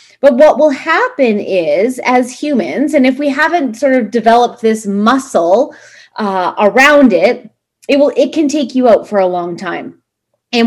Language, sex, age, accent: English, female, 30-49, American